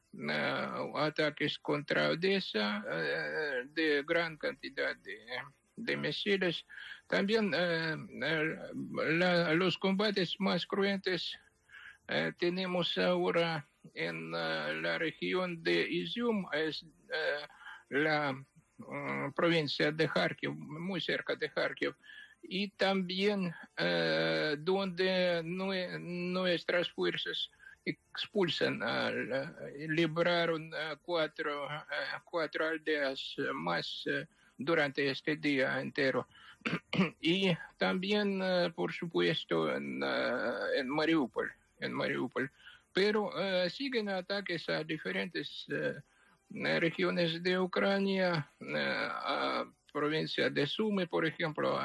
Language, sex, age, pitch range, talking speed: English, male, 60-79, 155-190 Hz, 85 wpm